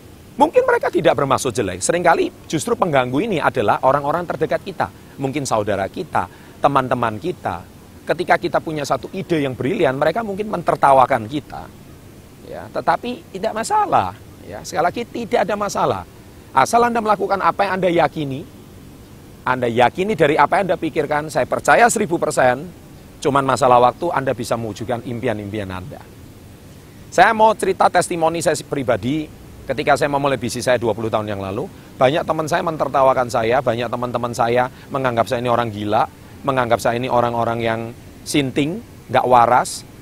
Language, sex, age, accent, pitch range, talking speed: Indonesian, male, 40-59, native, 120-170 Hz, 150 wpm